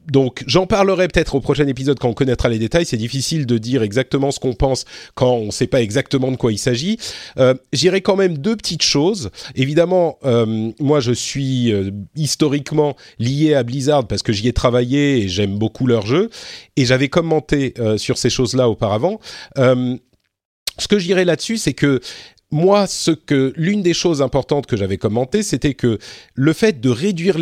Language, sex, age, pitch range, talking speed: French, male, 40-59, 120-165 Hz, 195 wpm